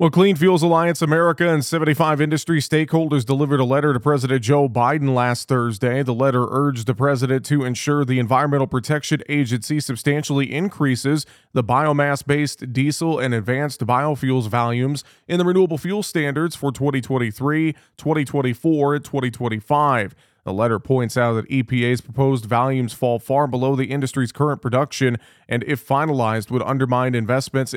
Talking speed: 150 wpm